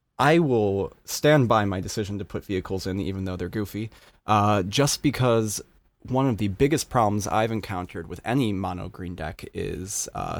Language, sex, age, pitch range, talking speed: English, male, 20-39, 95-115 Hz, 180 wpm